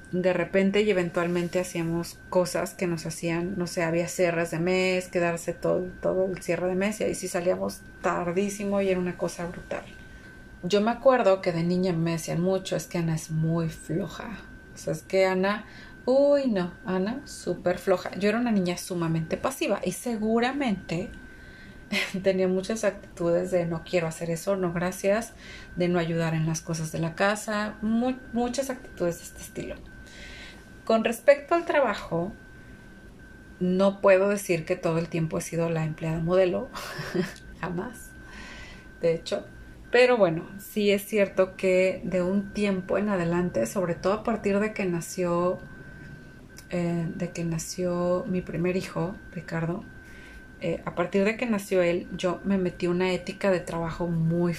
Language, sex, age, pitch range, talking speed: Spanish, female, 30-49, 170-195 Hz, 165 wpm